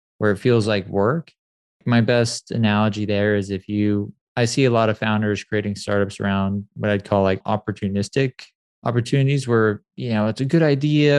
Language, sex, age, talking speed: English, male, 20-39, 180 wpm